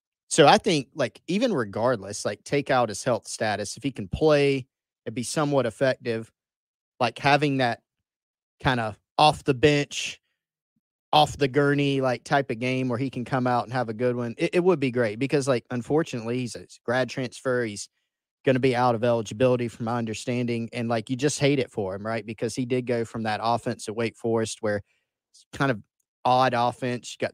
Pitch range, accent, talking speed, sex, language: 115-135 Hz, American, 195 wpm, male, English